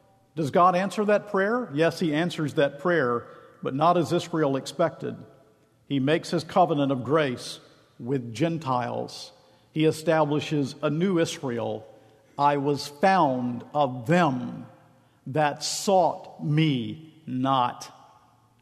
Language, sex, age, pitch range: English, male, 50-69, 140-175 Hz